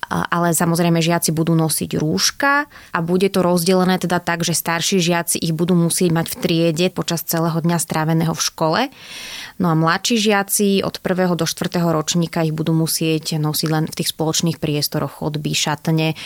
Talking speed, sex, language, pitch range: 175 wpm, female, Slovak, 165-185 Hz